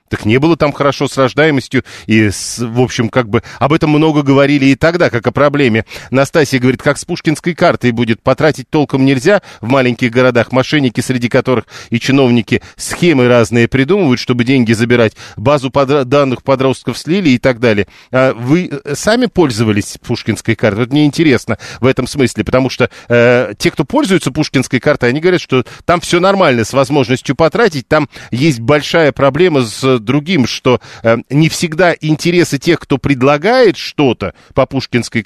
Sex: male